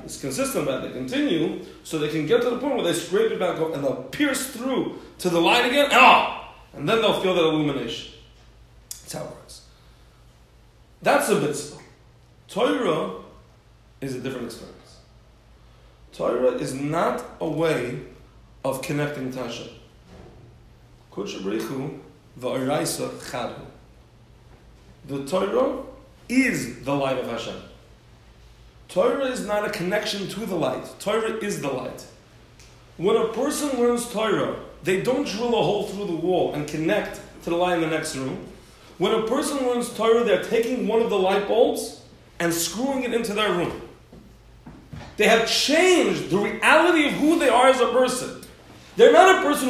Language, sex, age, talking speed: English, male, 40-59, 155 wpm